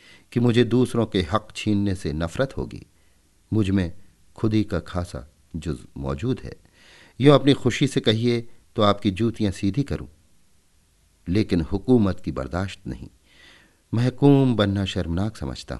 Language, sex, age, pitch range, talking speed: Hindi, male, 50-69, 80-110 Hz, 135 wpm